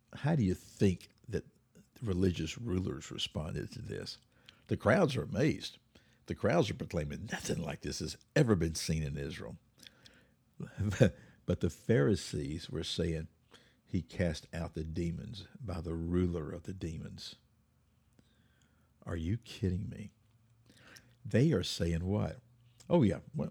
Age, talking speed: 60-79, 135 wpm